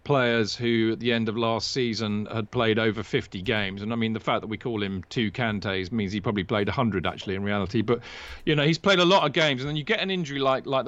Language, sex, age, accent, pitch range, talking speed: English, male, 40-59, British, 110-135 Hz, 270 wpm